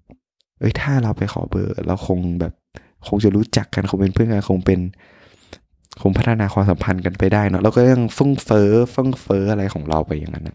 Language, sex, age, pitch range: Thai, male, 20-39, 90-115 Hz